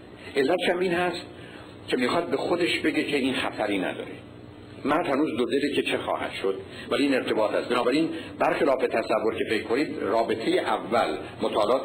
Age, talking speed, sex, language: 50-69, 160 wpm, male, Persian